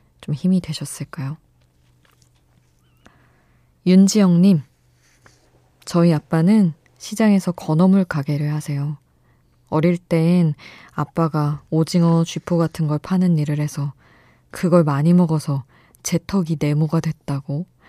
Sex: female